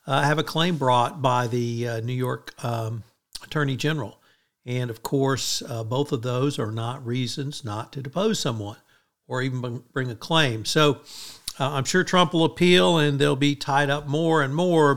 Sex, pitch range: male, 120-150 Hz